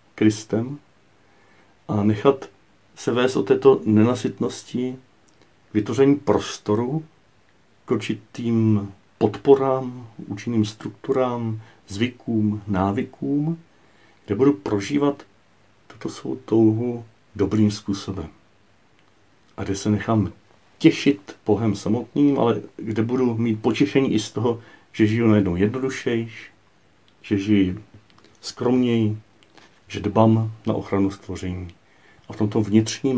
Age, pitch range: 50-69, 100-115 Hz